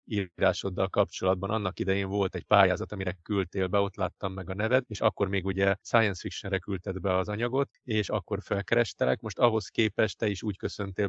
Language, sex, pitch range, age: Hungarian, male, 95-105 Hz, 30-49